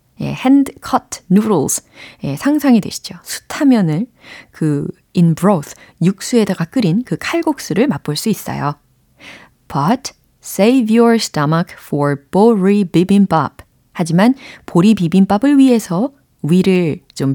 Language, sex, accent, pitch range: Korean, female, native, 155-235 Hz